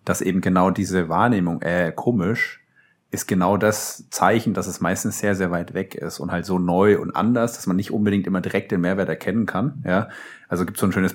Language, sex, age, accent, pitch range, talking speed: German, male, 30-49, German, 90-105 Hz, 220 wpm